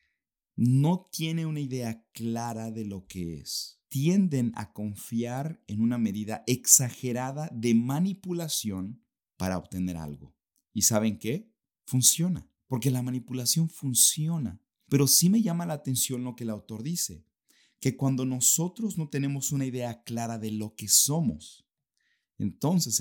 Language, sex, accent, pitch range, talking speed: Spanish, male, Mexican, 105-140 Hz, 140 wpm